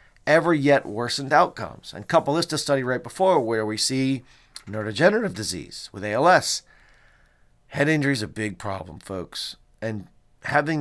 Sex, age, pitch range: male, 40-59, 105-135 Hz